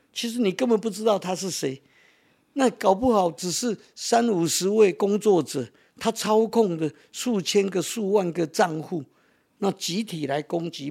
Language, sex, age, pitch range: Chinese, male, 50-69, 150-220 Hz